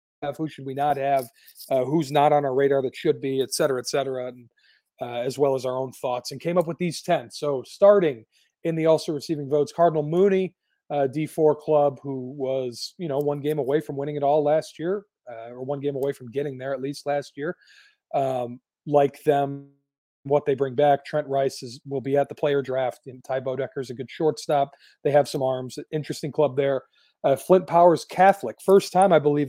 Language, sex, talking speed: English, male, 220 wpm